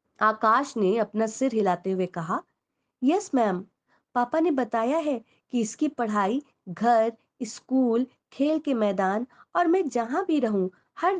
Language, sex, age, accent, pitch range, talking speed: Hindi, female, 20-39, native, 210-285 Hz, 145 wpm